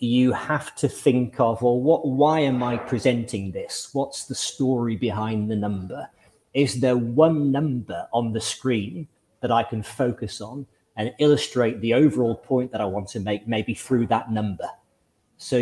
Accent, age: British, 30-49